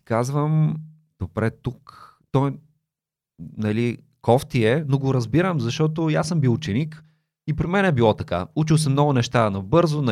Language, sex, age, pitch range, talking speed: Bulgarian, male, 30-49, 110-155 Hz, 160 wpm